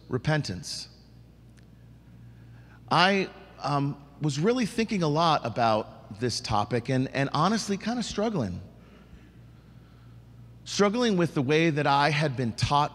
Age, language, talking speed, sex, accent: 40-59, English, 120 wpm, male, American